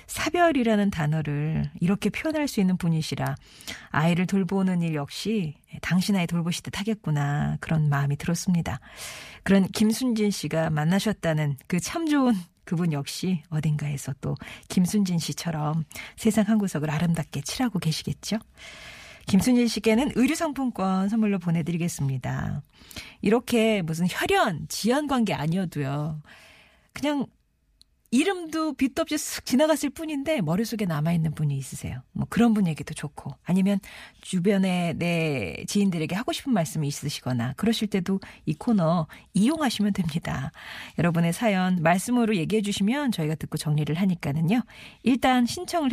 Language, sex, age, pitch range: Korean, female, 40-59, 155-215 Hz